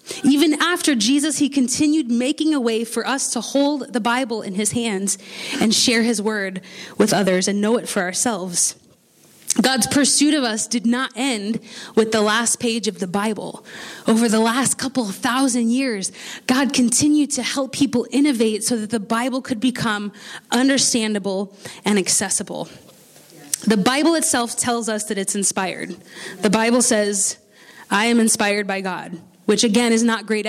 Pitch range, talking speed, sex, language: 215-270 Hz, 165 wpm, female, English